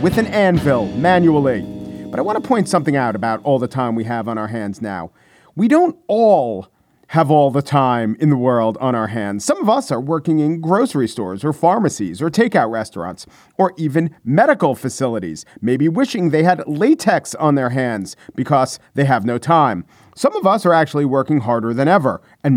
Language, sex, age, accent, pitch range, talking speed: English, male, 40-59, American, 125-175 Hz, 195 wpm